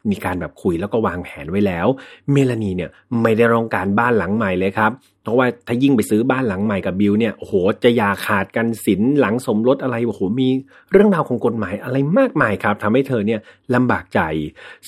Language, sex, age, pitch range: Thai, male, 30-49, 95-130 Hz